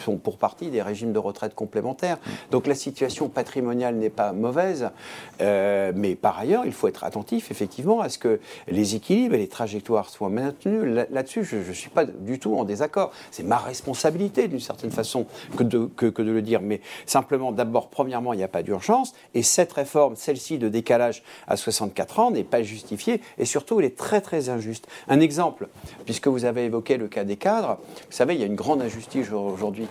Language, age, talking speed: French, 50-69, 205 wpm